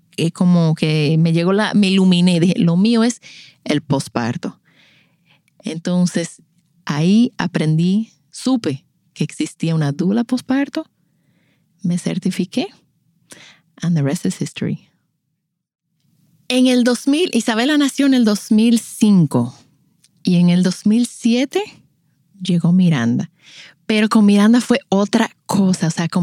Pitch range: 170-225 Hz